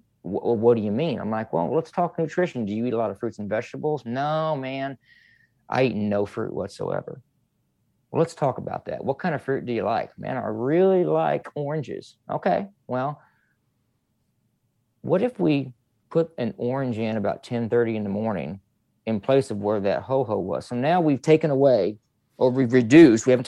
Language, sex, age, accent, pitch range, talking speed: English, male, 40-59, American, 115-140 Hz, 190 wpm